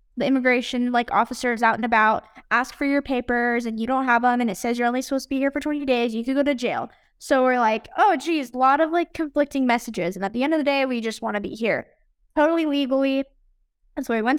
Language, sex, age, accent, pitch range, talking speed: English, female, 10-29, American, 235-290 Hz, 265 wpm